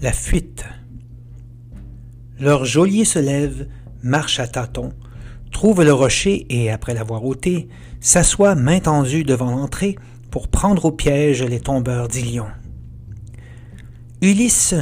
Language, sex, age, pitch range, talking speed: French, male, 60-79, 120-155 Hz, 115 wpm